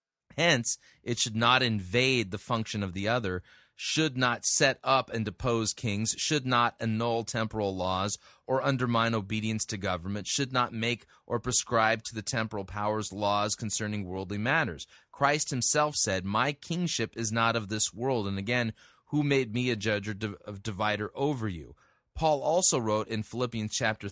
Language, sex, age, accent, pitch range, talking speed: English, male, 30-49, American, 105-130 Hz, 165 wpm